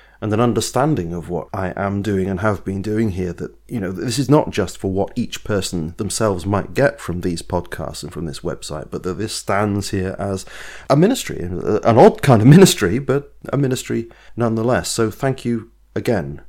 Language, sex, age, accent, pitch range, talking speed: English, male, 30-49, British, 95-120 Hz, 200 wpm